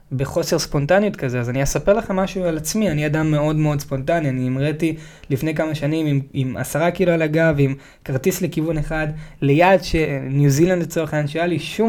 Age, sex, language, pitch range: 20-39, male, Hebrew, 125-160 Hz